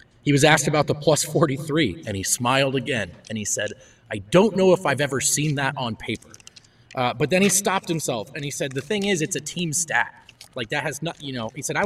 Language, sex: English, male